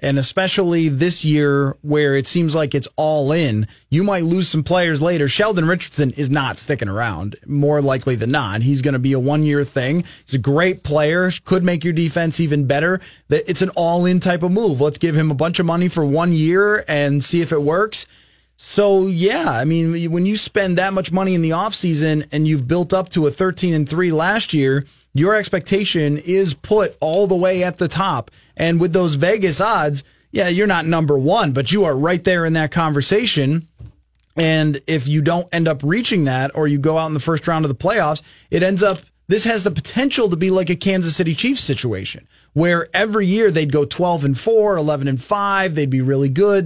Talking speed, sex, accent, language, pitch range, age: 215 wpm, male, American, English, 145-185 Hz, 30-49